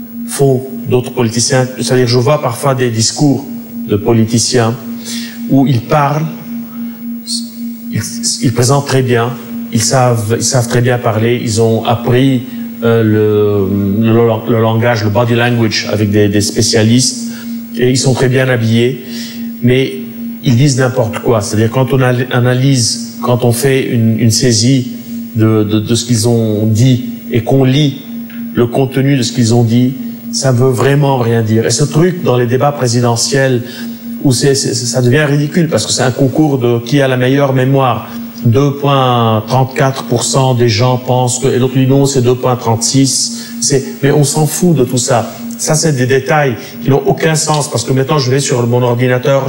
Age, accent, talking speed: 40-59, French, 175 wpm